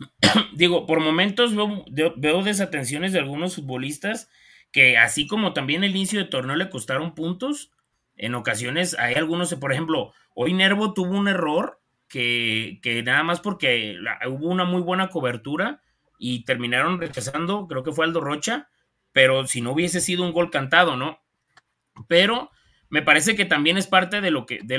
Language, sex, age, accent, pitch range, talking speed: Spanish, male, 30-49, Mexican, 125-180 Hz, 160 wpm